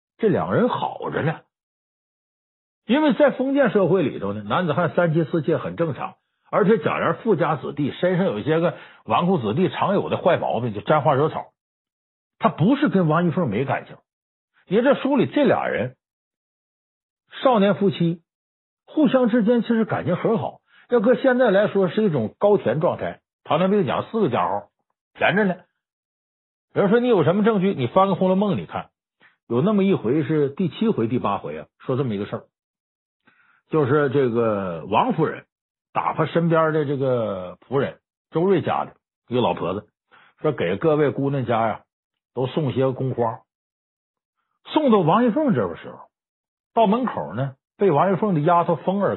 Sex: male